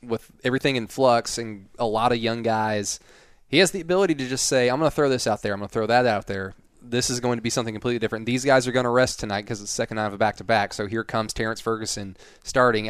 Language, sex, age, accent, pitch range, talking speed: English, male, 20-39, American, 105-125 Hz, 275 wpm